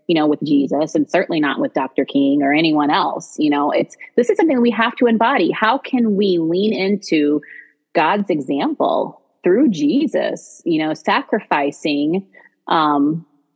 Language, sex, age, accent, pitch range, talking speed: English, female, 30-49, American, 150-210 Hz, 160 wpm